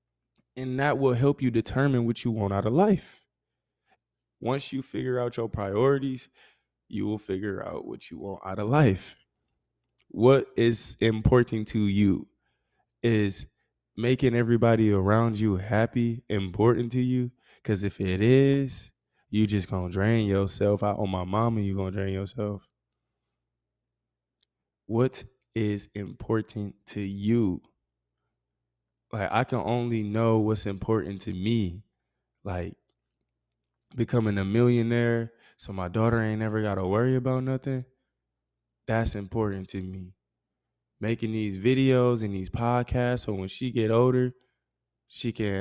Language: English